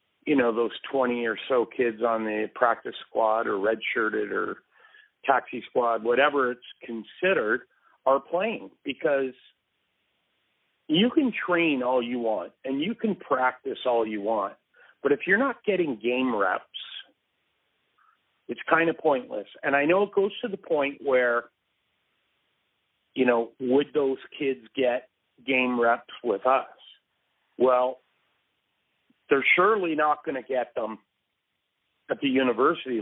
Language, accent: English, American